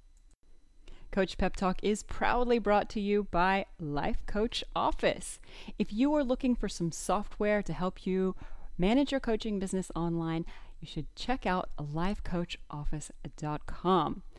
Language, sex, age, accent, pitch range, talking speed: English, female, 30-49, American, 165-210 Hz, 135 wpm